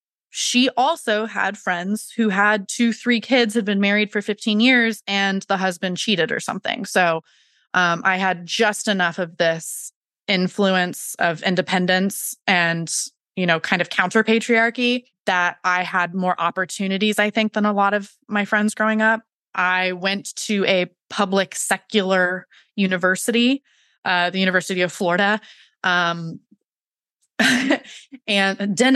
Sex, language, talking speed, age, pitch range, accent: female, English, 145 wpm, 20-39, 175-215 Hz, American